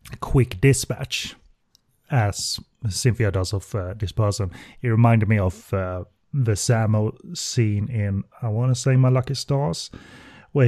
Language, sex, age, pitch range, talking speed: English, male, 30-49, 100-125 Hz, 145 wpm